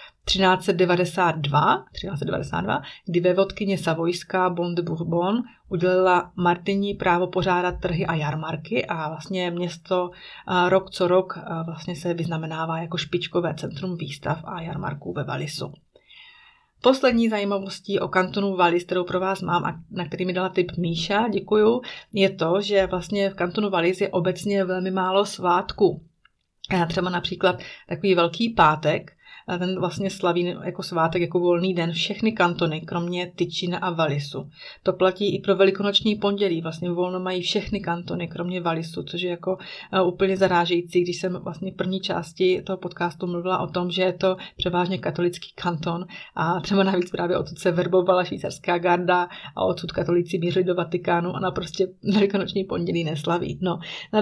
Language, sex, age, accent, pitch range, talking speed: Czech, female, 30-49, native, 175-190 Hz, 155 wpm